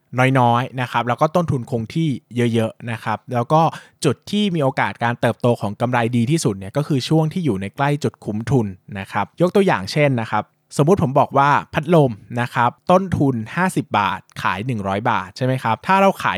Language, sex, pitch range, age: Thai, male, 110-150 Hz, 20-39